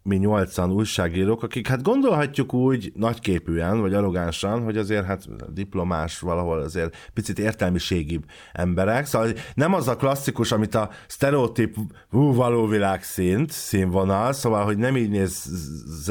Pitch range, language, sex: 90-115 Hz, Hungarian, male